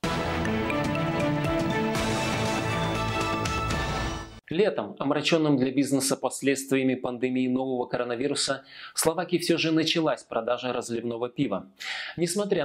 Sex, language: male, Russian